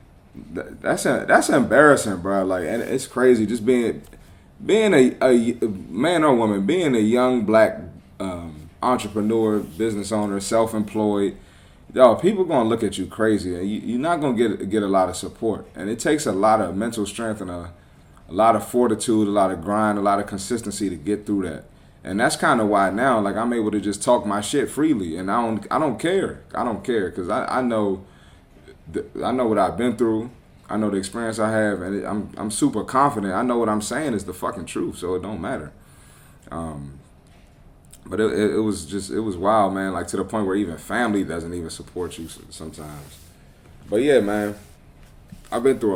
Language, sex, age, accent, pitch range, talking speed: English, male, 20-39, American, 90-110 Hz, 210 wpm